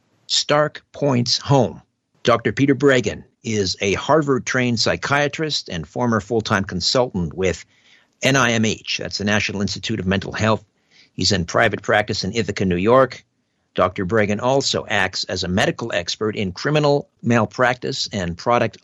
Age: 50-69